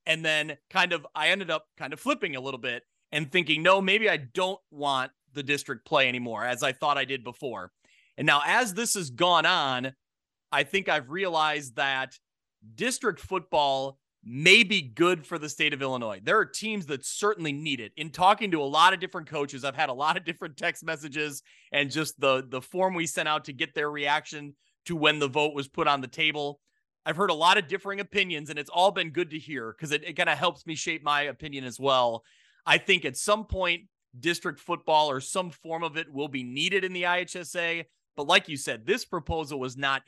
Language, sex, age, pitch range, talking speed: English, male, 30-49, 140-180 Hz, 220 wpm